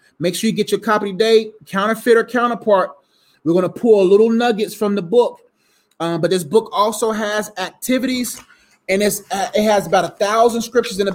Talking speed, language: 200 wpm, English